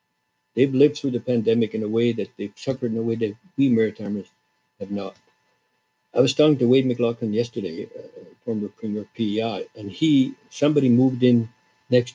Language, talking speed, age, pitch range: English, 180 wpm, 60-79, 110-135 Hz